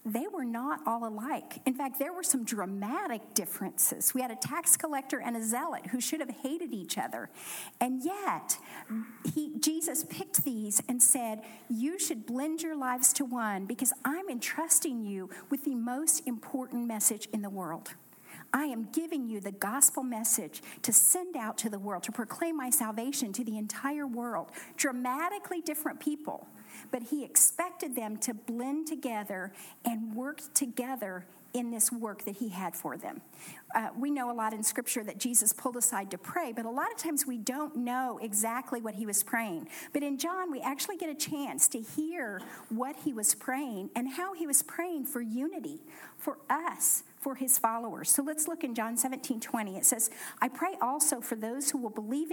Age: 50-69